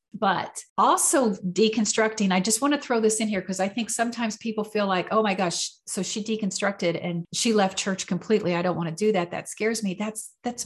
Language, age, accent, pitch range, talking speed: English, 40-59, American, 180-220 Hz, 225 wpm